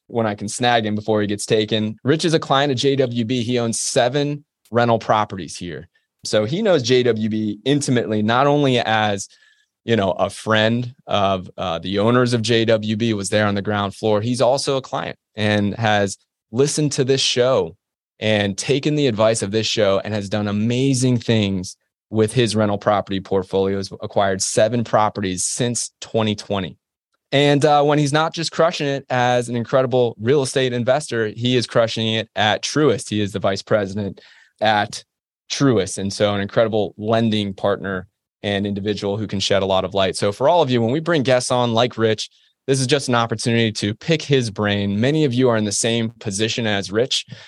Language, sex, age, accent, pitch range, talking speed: English, male, 20-39, American, 105-125 Hz, 190 wpm